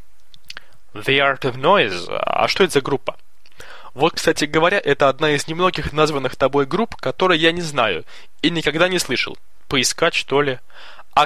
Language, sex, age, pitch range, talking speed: Russian, male, 20-39, 145-185 Hz, 165 wpm